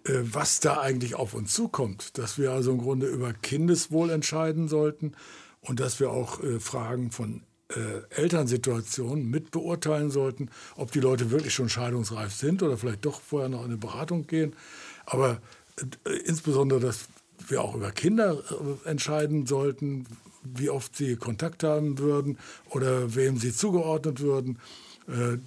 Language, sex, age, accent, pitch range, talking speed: German, male, 60-79, German, 125-150 Hz, 155 wpm